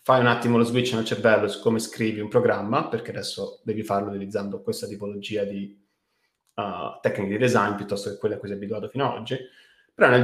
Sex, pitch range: male, 110-130 Hz